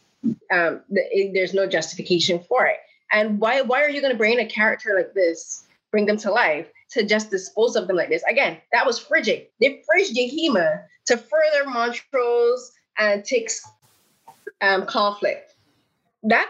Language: English